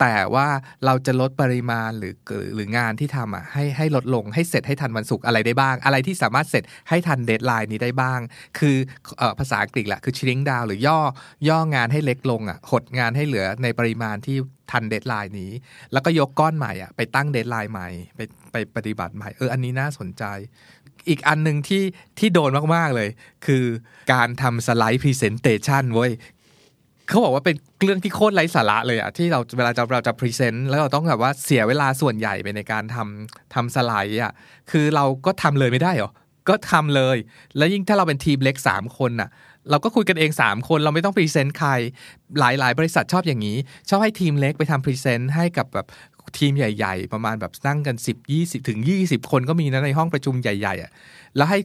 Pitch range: 115-150 Hz